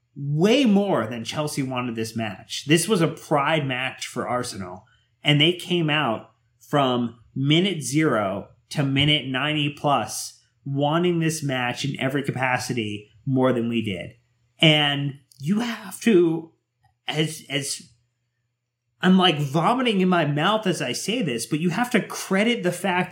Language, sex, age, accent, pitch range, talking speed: English, male, 30-49, American, 120-155 Hz, 150 wpm